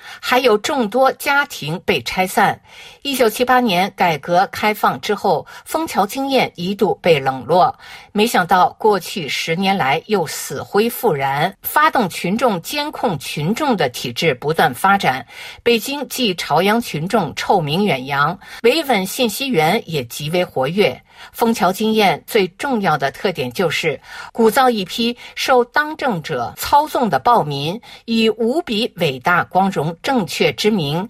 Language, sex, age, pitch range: Chinese, female, 50-69, 185-255 Hz